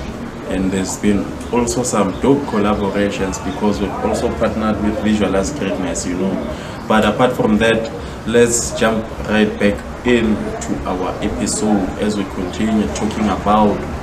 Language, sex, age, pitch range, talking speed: English, male, 20-39, 95-110 Hz, 140 wpm